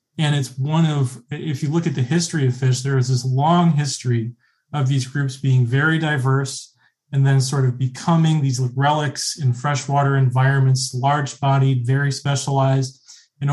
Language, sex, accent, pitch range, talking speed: English, male, American, 130-145 Hz, 170 wpm